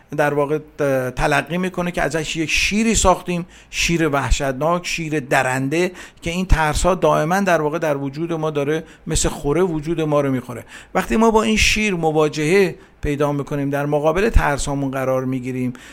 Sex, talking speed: male, 160 wpm